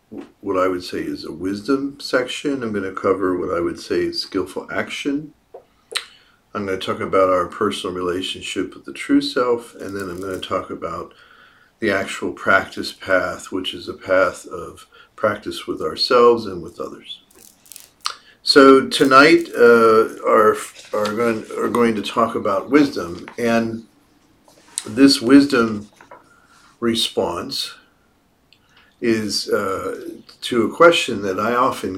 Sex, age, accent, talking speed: male, 50-69, American, 145 wpm